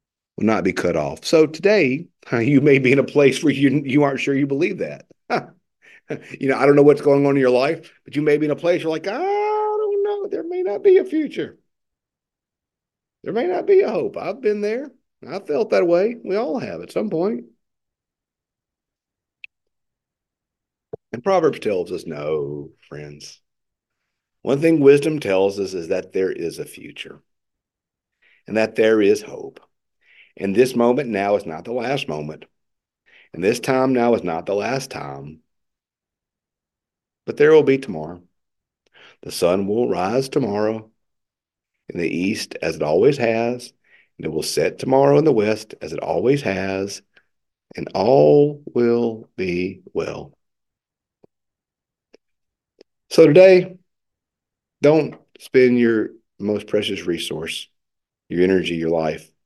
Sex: male